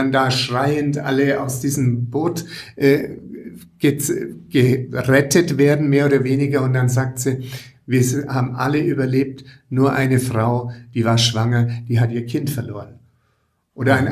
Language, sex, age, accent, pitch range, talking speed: German, male, 60-79, German, 125-145 Hz, 145 wpm